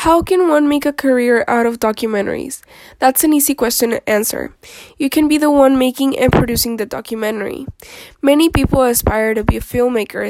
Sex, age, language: female, 10-29, English